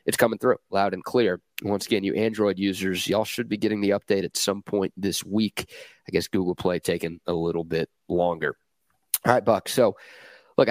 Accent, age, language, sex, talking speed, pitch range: American, 30-49, English, male, 200 wpm, 95-115 Hz